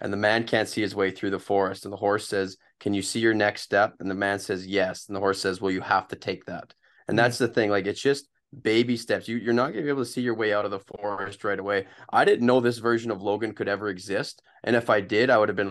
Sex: male